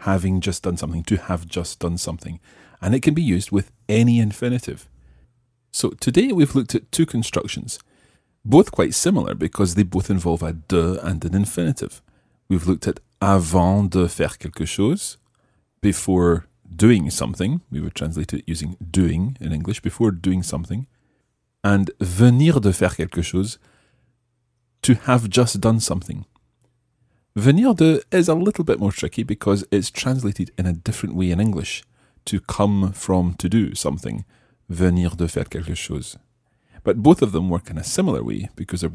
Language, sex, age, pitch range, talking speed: English, male, 30-49, 90-120 Hz, 165 wpm